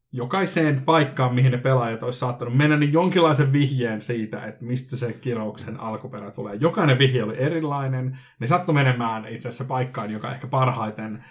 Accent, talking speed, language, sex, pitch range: native, 165 wpm, Finnish, male, 115-140 Hz